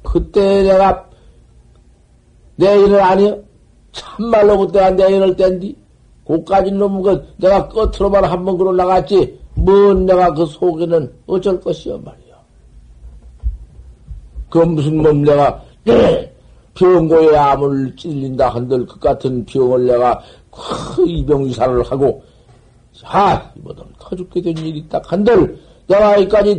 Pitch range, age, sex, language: 125-190 Hz, 50-69, male, Korean